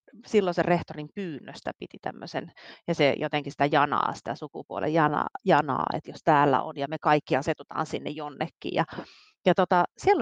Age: 30-49